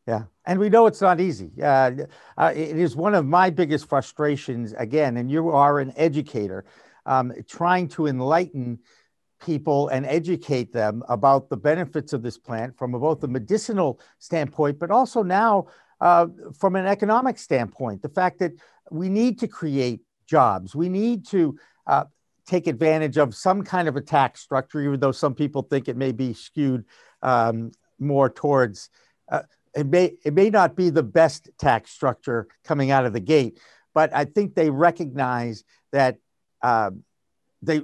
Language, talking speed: English, 170 wpm